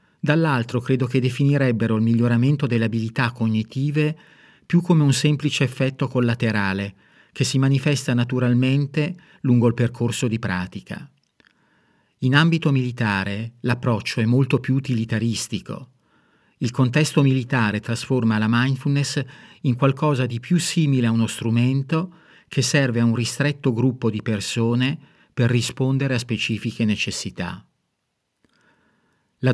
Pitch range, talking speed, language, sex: 115-140 Hz, 120 wpm, Italian, male